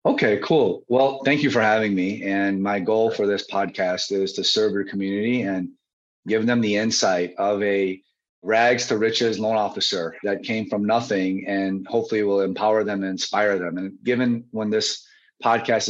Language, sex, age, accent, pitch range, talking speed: English, male, 30-49, American, 100-125 Hz, 180 wpm